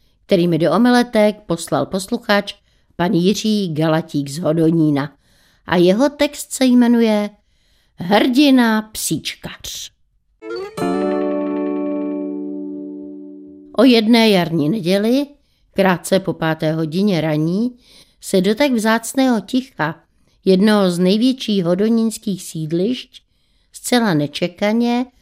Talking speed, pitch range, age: 90 wpm, 170-235 Hz, 60-79